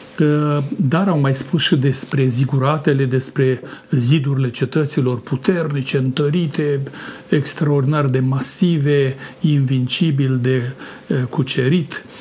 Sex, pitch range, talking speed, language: male, 135-160 Hz, 90 wpm, Romanian